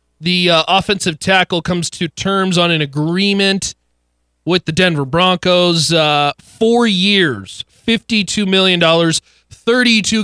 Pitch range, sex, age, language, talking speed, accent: 115-190 Hz, male, 30-49, English, 115 wpm, American